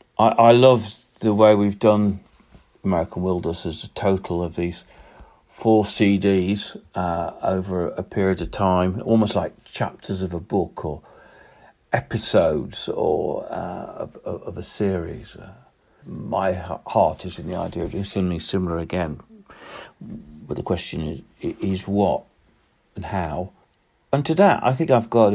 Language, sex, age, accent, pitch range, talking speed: English, male, 60-79, British, 85-110 Hz, 145 wpm